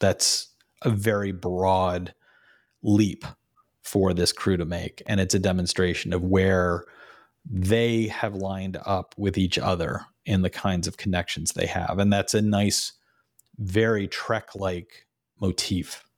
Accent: American